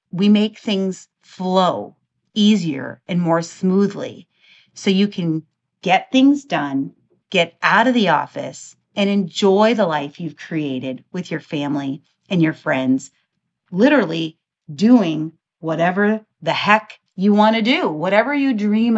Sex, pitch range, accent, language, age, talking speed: female, 155-210 Hz, American, English, 40-59, 135 wpm